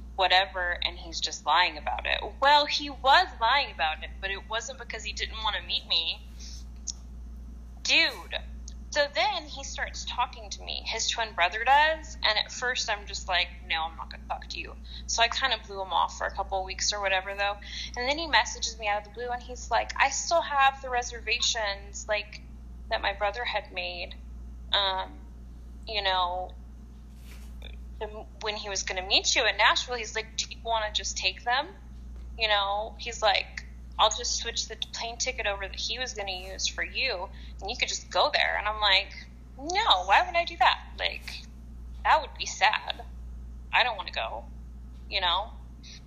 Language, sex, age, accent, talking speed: English, female, 10-29, American, 200 wpm